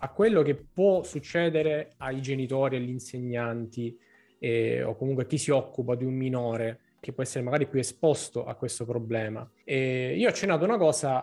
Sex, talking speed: male, 185 wpm